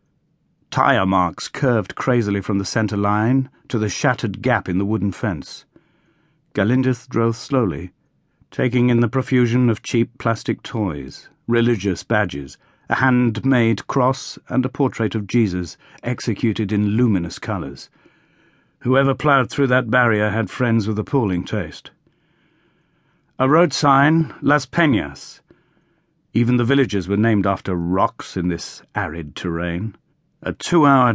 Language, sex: English, male